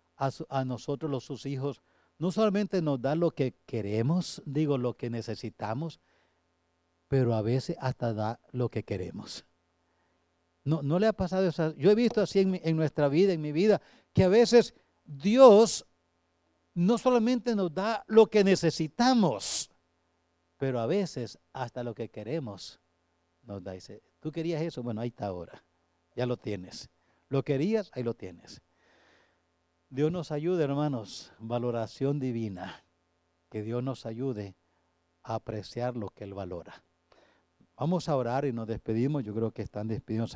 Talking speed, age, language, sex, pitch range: 160 wpm, 50-69, English, male, 105-150 Hz